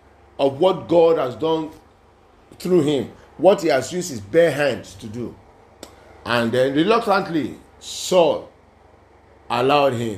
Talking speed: 130 wpm